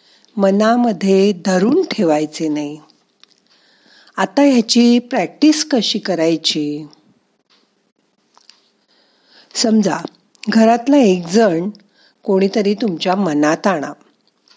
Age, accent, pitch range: 50-69, native, 185-245 Hz